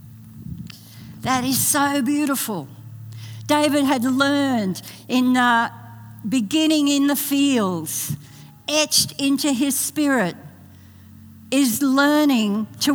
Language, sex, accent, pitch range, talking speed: English, female, Australian, 175-275 Hz, 95 wpm